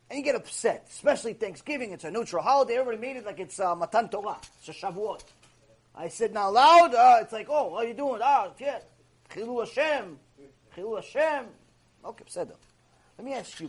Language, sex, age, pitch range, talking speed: English, male, 30-49, 175-280 Hz, 195 wpm